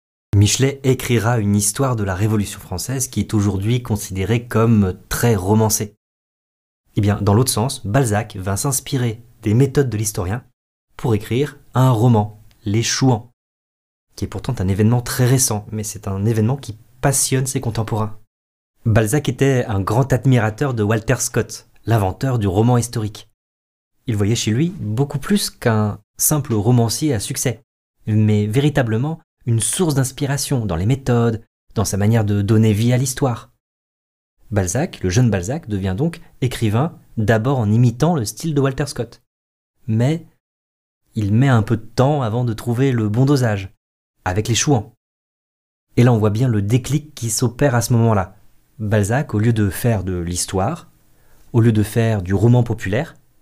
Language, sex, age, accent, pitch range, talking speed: French, male, 30-49, French, 105-130 Hz, 160 wpm